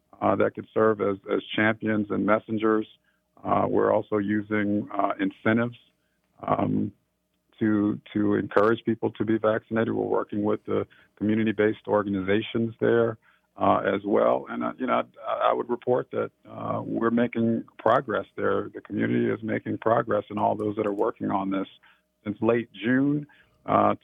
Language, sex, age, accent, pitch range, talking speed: English, male, 50-69, American, 105-115 Hz, 160 wpm